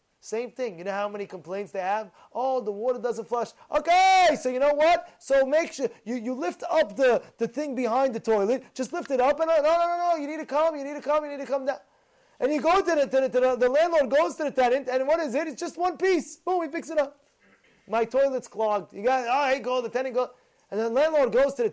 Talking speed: 275 wpm